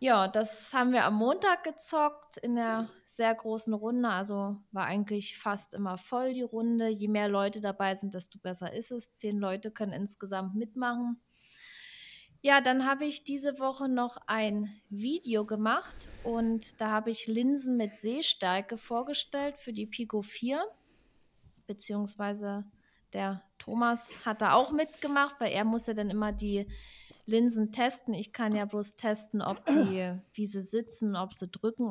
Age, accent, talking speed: 20-39, German, 160 wpm